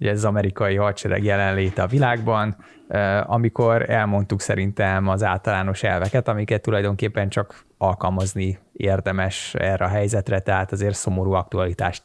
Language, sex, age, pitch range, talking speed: Hungarian, male, 20-39, 100-125 Hz, 125 wpm